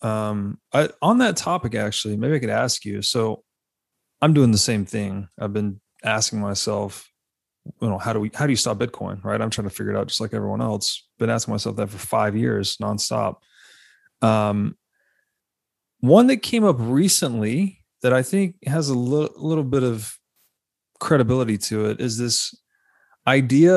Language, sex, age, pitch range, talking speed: English, male, 30-49, 110-140 Hz, 180 wpm